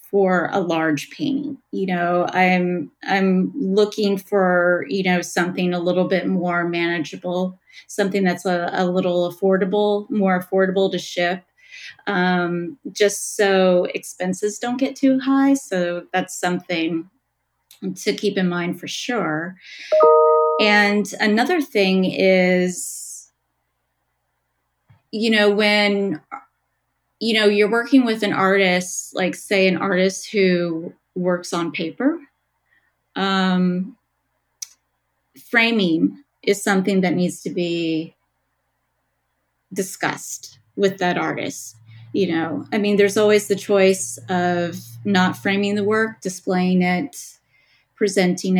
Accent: American